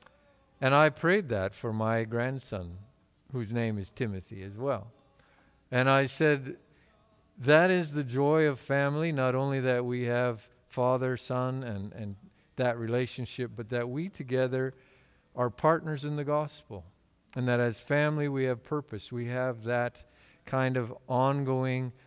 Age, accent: 50-69, American